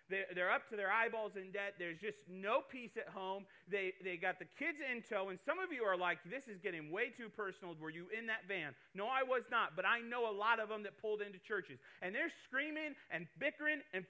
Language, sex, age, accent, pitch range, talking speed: English, male, 30-49, American, 150-220 Hz, 245 wpm